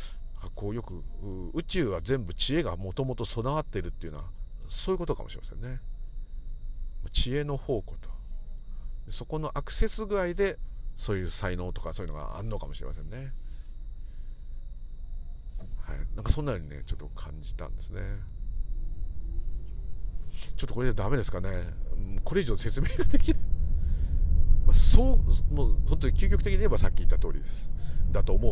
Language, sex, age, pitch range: Japanese, male, 50-69, 80-110 Hz